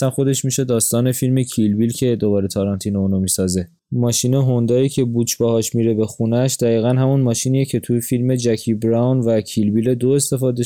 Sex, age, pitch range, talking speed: male, 20-39, 110-130 Hz, 185 wpm